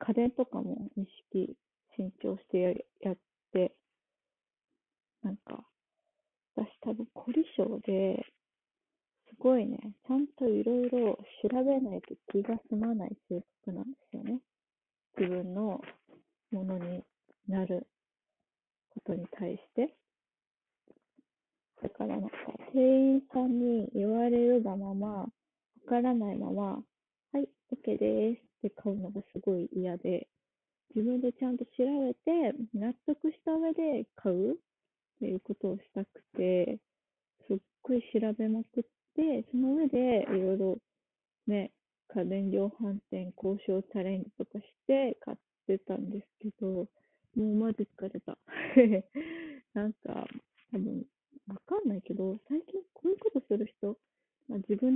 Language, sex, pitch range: Japanese, female, 200-255 Hz